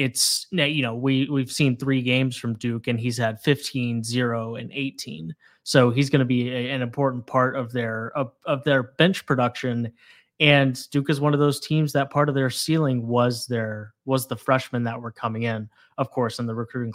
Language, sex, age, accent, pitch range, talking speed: English, male, 20-39, American, 115-140 Hz, 205 wpm